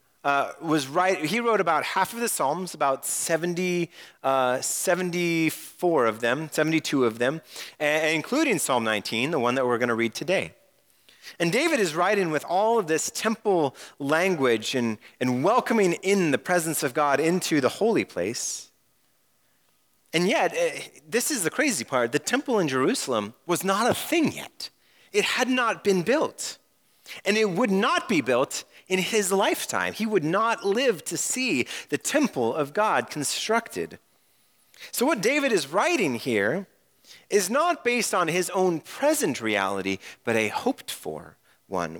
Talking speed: 160 wpm